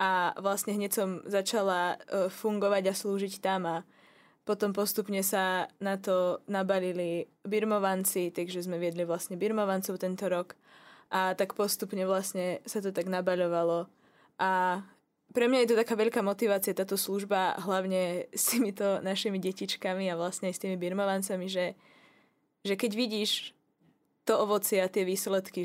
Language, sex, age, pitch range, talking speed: Slovak, female, 20-39, 180-200 Hz, 145 wpm